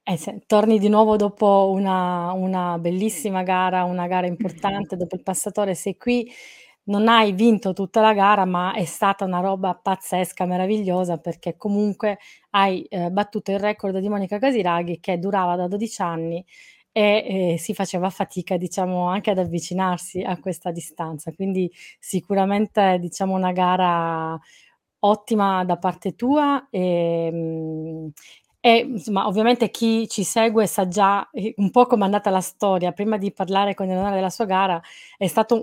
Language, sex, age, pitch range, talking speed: Italian, female, 20-39, 185-210 Hz, 150 wpm